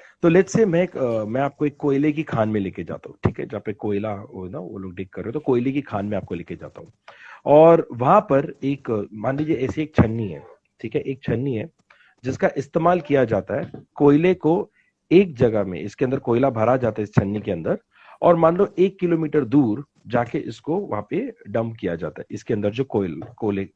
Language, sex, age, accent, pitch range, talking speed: Hindi, male, 40-59, native, 105-150 Hz, 225 wpm